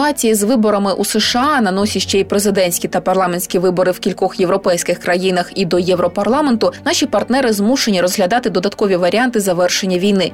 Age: 20-39